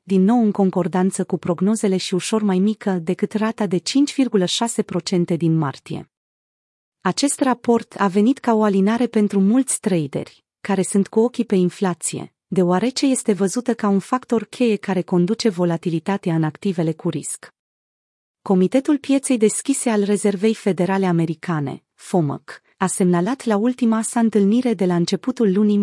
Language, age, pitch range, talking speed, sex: Romanian, 30-49, 180-225 Hz, 150 wpm, female